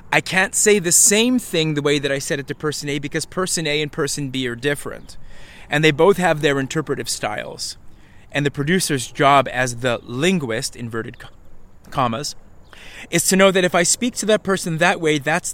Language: English